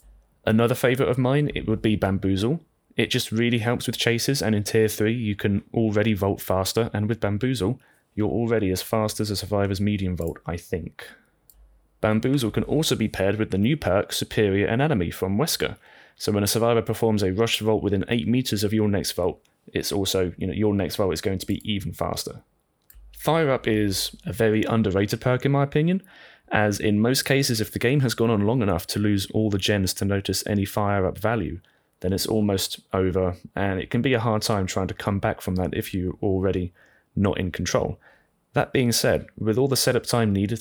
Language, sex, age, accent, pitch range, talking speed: English, male, 20-39, British, 95-115 Hz, 210 wpm